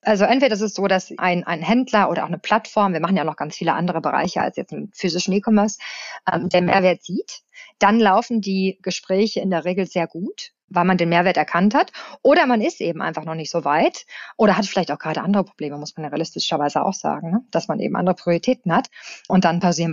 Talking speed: 230 wpm